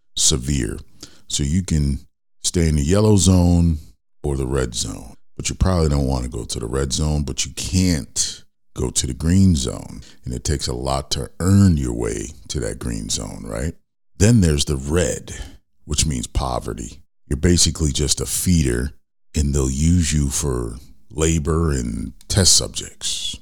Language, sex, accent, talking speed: English, male, American, 170 wpm